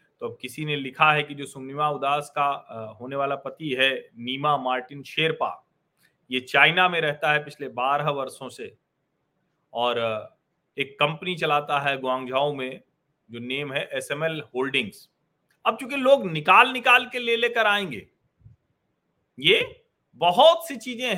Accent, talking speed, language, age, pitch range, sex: native, 145 wpm, Hindi, 40-59, 130-180 Hz, male